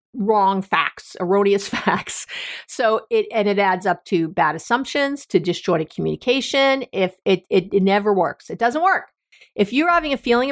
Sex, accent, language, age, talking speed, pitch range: female, American, English, 50-69, 170 wpm, 190-260 Hz